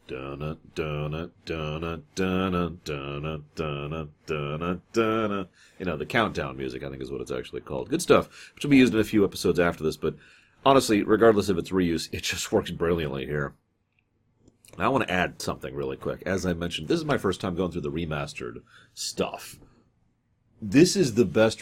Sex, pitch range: male, 75-105 Hz